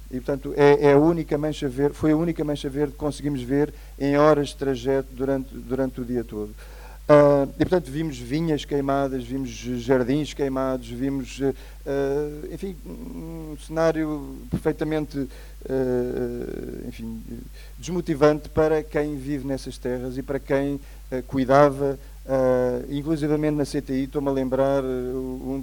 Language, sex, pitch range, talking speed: Portuguese, male, 130-150 Hz, 145 wpm